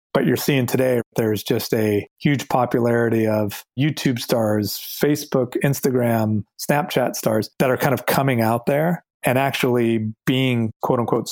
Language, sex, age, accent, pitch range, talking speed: English, male, 30-49, American, 110-130 Hz, 150 wpm